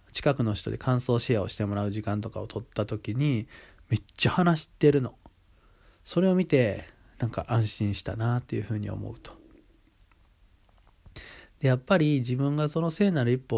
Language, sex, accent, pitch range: Japanese, male, native, 105-130 Hz